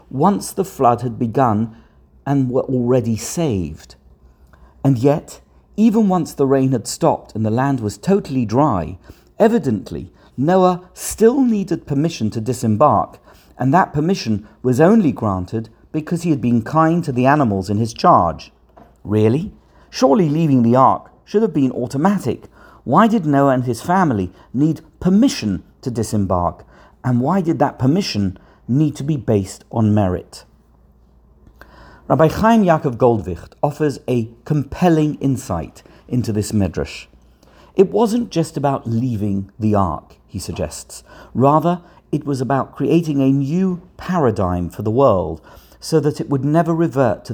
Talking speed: 145 wpm